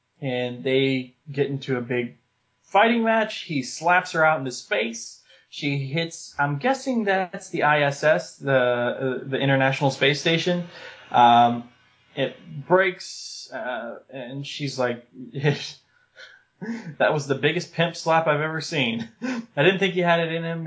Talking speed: 145 wpm